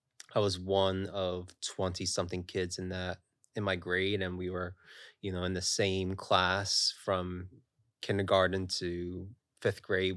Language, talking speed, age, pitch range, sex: English, 155 wpm, 20-39, 90-105 Hz, male